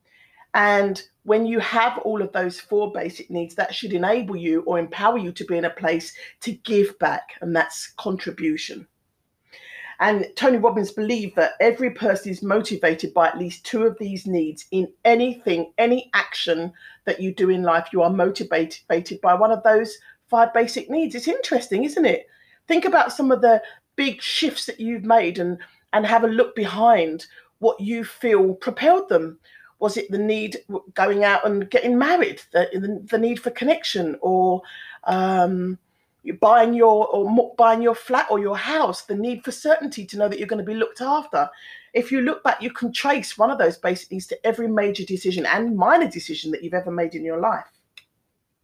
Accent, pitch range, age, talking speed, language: British, 180-235 Hz, 40-59, 190 wpm, English